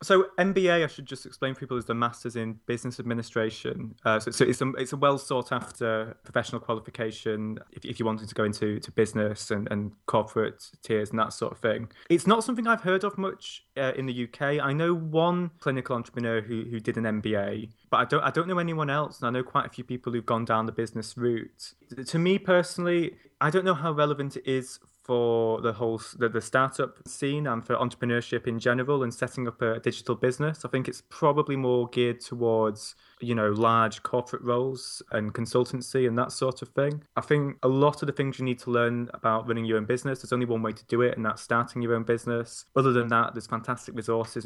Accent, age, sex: British, 20-39, male